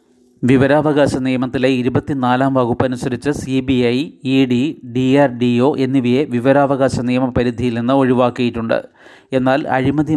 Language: Malayalam